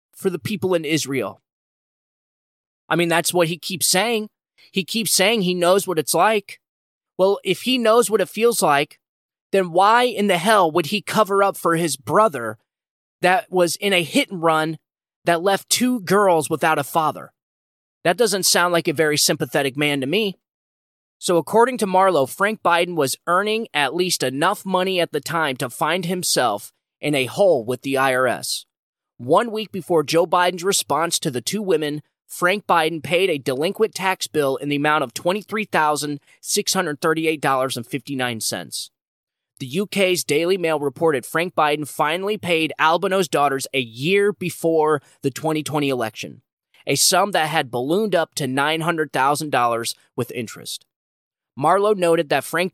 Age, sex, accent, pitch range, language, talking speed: 20-39, male, American, 145-190 Hz, English, 175 wpm